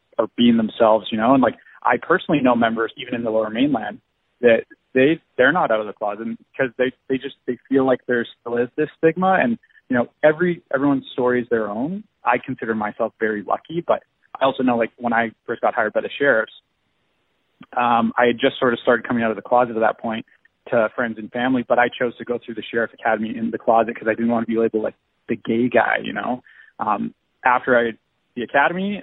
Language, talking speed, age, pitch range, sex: English, 230 wpm, 20-39, 115-145 Hz, male